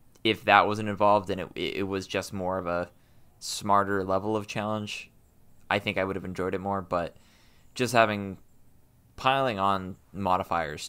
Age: 20-39